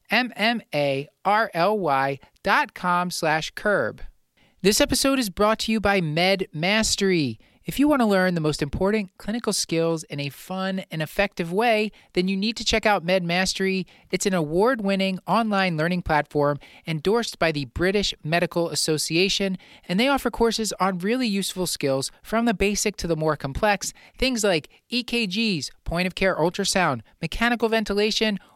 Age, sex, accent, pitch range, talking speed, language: 30-49, male, American, 165-210 Hz, 155 wpm, English